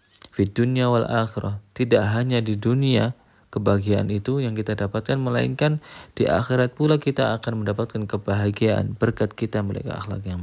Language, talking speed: Indonesian, 150 wpm